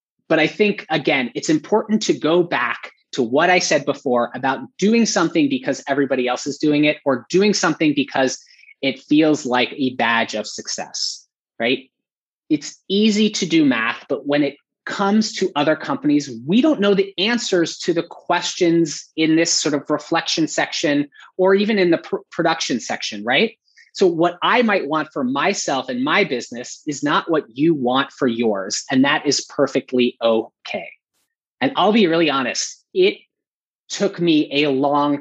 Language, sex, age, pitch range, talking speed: English, male, 30-49, 135-200 Hz, 170 wpm